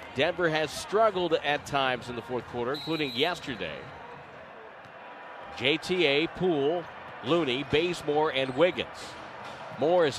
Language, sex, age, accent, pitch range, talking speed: English, male, 50-69, American, 135-165 Hz, 105 wpm